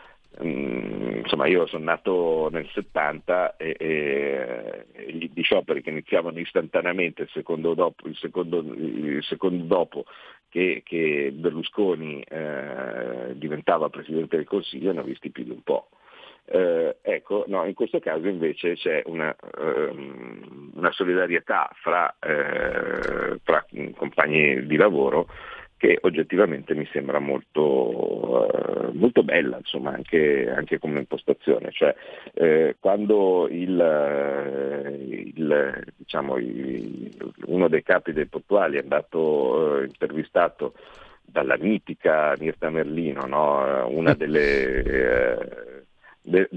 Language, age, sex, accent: Italian, 50-69, male, native